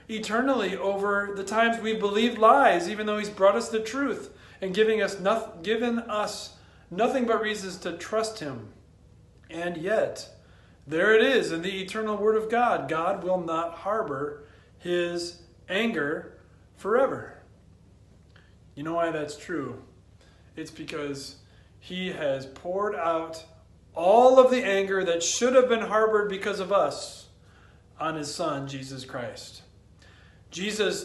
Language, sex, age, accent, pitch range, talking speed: English, male, 40-59, American, 135-220 Hz, 140 wpm